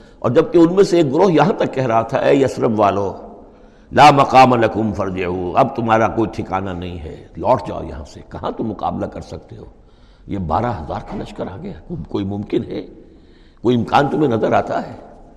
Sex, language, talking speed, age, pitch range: male, Urdu, 195 wpm, 60-79, 95-130 Hz